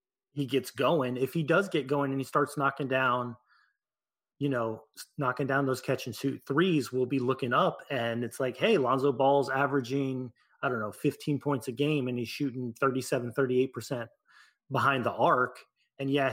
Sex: male